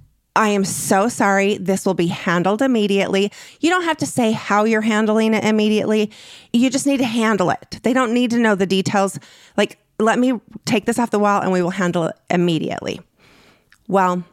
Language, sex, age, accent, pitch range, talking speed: English, female, 30-49, American, 175-215 Hz, 195 wpm